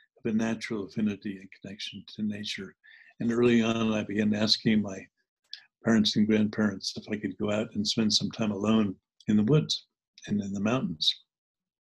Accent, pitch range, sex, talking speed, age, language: American, 105-145 Hz, male, 170 wpm, 60-79, English